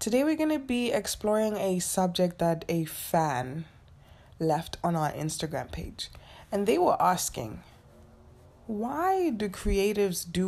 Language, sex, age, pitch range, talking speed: English, female, 20-39, 155-190 Hz, 135 wpm